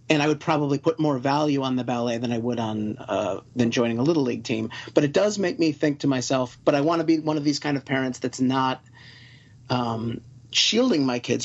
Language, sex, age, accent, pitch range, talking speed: English, male, 30-49, American, 120-145 Hz, 240 wpm